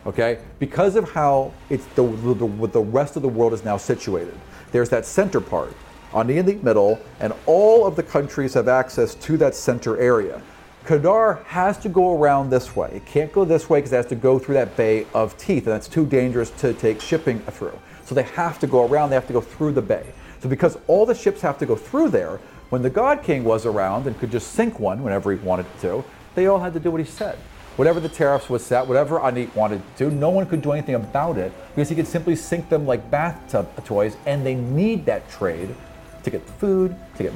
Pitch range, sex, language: 125-170 Hz, male, English